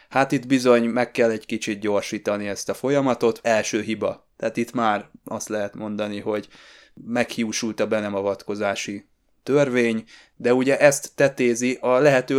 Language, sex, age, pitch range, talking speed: Hungarian, male, 20-39, 110-130 Hz, 145 wpm